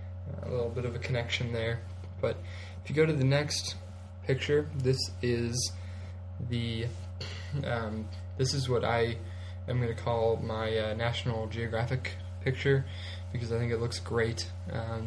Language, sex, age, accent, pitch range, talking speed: English, male, 20-39, American, 90-120 Hz, 155 wpm